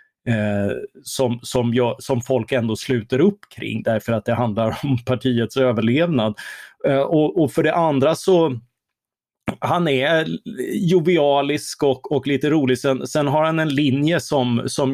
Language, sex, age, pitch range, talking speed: Swedish, male, 30-49, 120-145 Hz, 140 wpm